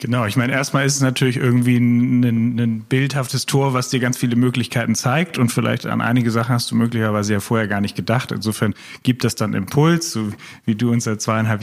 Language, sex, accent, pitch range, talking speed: German, male, German, 110-125 Hz, 220 wpm